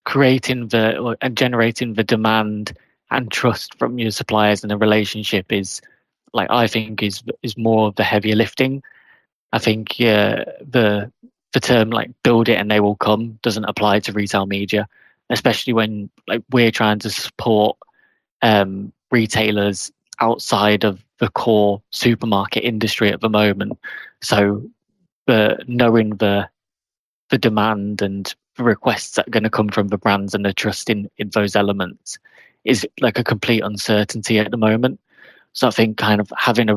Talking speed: 165 wpm